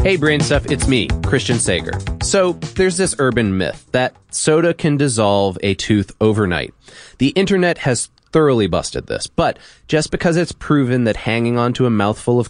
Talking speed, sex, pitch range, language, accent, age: 170 wpm, male, 105-155 Hz, English, American, 20-39